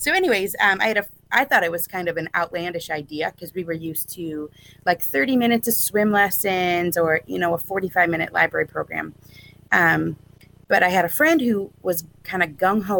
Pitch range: 160-205 Hz